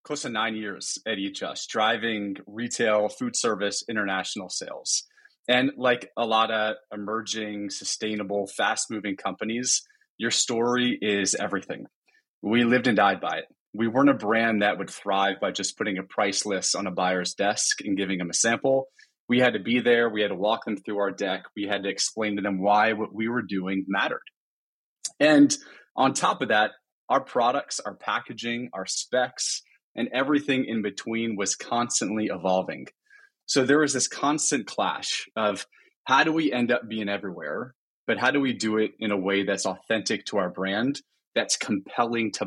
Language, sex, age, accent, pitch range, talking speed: English, male, 30-49, American, 100-125 Hz, 180 wpm